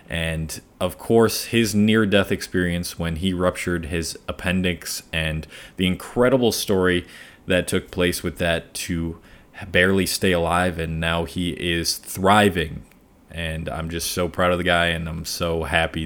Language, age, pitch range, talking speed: English, 20-39, 85-100 Hz, 155 wpm